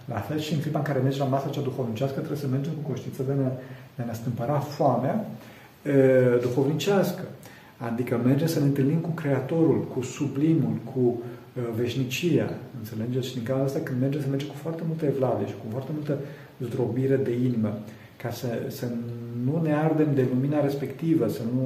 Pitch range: 120-145 Hz